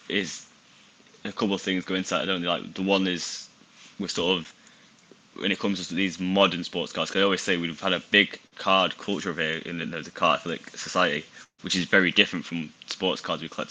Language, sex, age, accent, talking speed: English, male, 10-29, British, 225 wpm